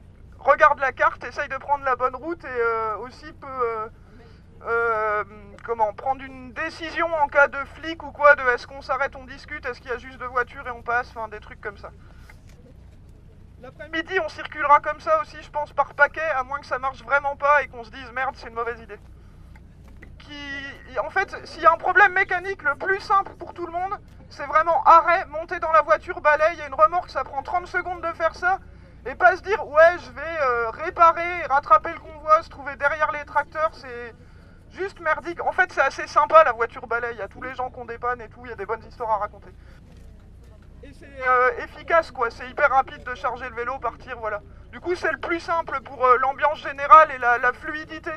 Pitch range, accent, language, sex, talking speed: 240-320 Hz, French, French, male, 230 wpm